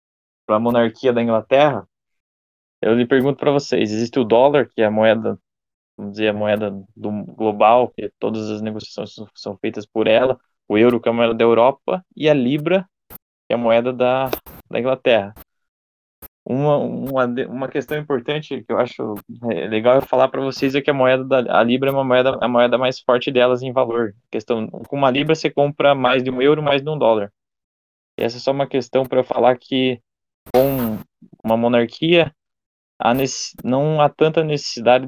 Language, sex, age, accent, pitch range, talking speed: Portuguese, male, 20-39, Brazilian, 115-135 Hz, 190 wpm